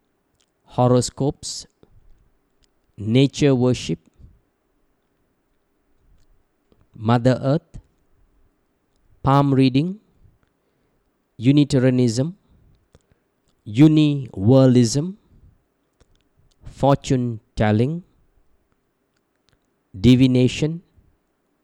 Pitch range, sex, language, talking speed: 120-140 Hz, male, English, 35 wpm